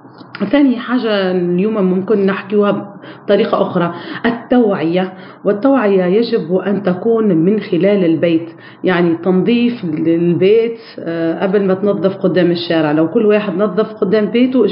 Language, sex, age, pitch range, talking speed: Arabic, female, 40-59, 180-220 Hz, 120 wpm